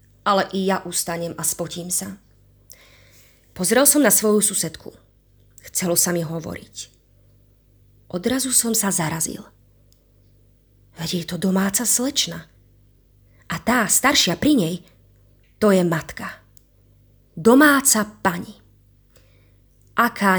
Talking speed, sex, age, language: 105 wpm, female, 20-39, Slovak